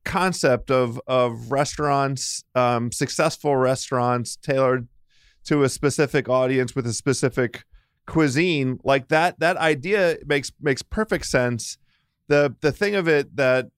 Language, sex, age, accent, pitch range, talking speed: English, male, 40-59, American, 120-145 Hz, 130 wpm